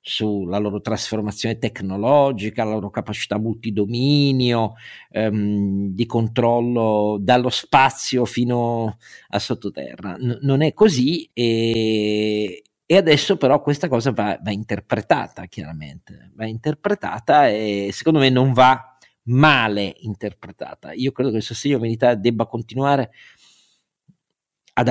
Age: 50-69